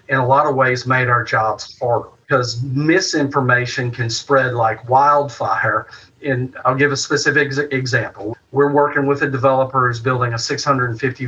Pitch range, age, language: 125-145 Hz, 40-59, English